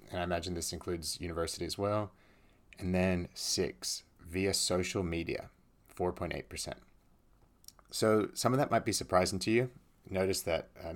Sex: male